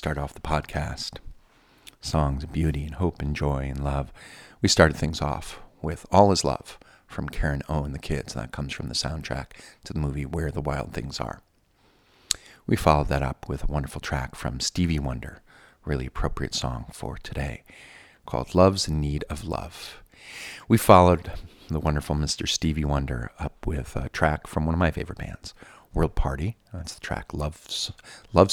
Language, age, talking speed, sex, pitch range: English, 40-59, 185 wpm, male, 70-85 Hz